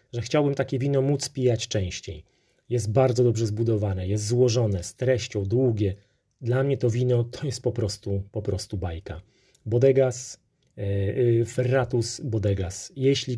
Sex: male